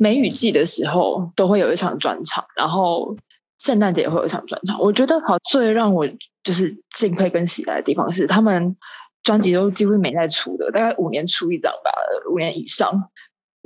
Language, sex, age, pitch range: Chinese, female, 20-39, 180-225 Hz